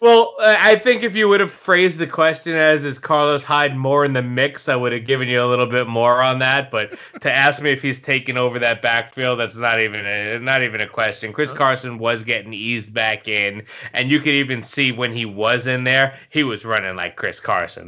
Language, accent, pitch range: English, American, 110-130 Hz